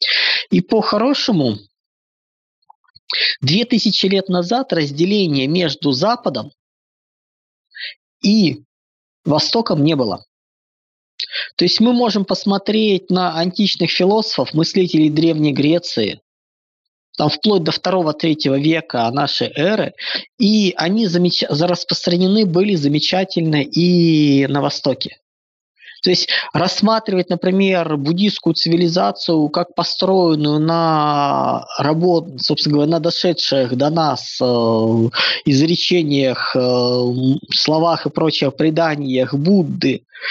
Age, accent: 20-39, native